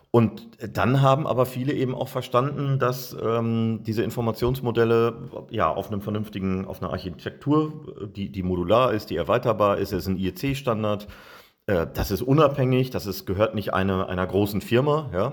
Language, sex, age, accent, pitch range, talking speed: German, male, 40-59, German, 95-115 Hz, 170 wpm